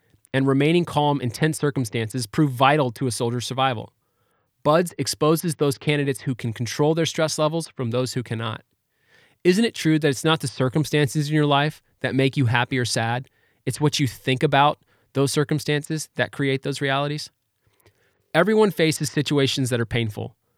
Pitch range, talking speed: 120-160 Hz, 175 wpm